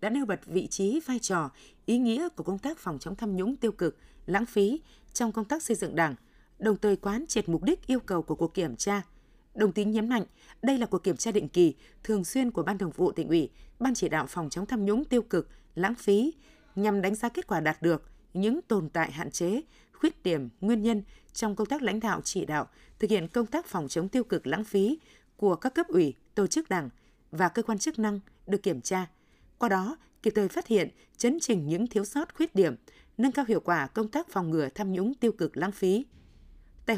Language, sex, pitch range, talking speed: Vietnamese, female, 180-235 Hz, 235 wpm